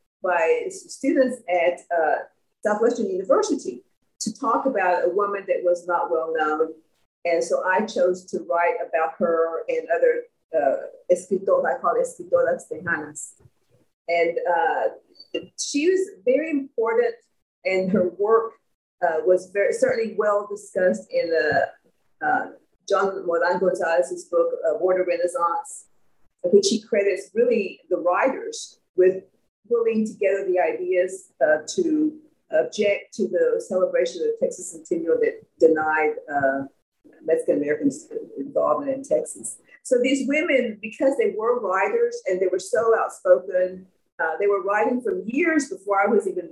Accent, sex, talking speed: American, female, 130 wpm